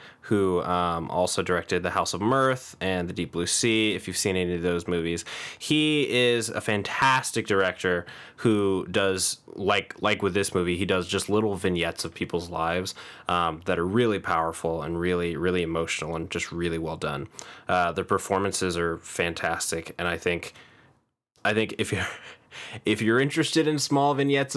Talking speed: 175 wpm